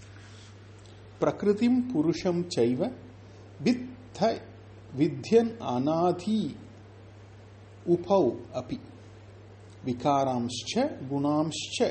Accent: native